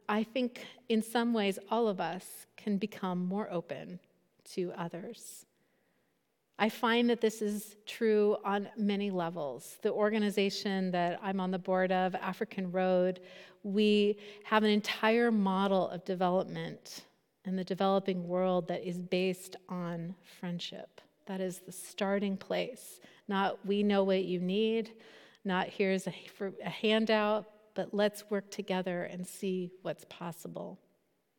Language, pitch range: English, 185-215 Hz